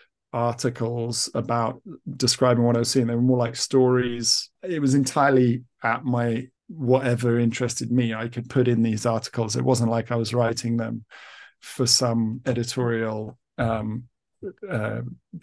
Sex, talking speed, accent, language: male, 150 wpm, British, English